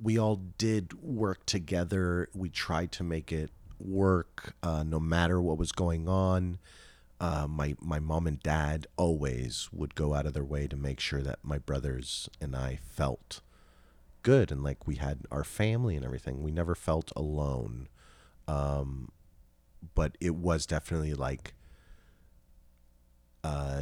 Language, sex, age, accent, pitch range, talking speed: English, male, 40-59, American, 75-95 Hz, 150 wpm